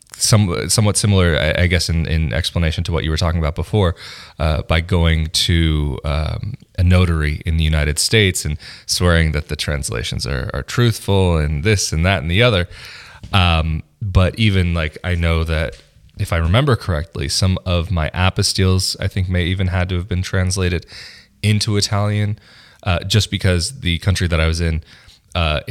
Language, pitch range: English, 80-100 Hz